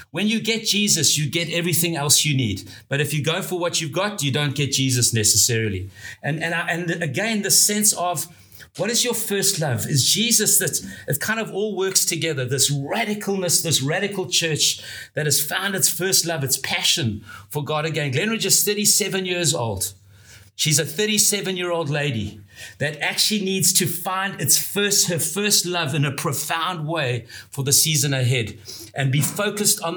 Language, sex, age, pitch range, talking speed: English, male, 60-79, 135-190 Hz, 180 wpm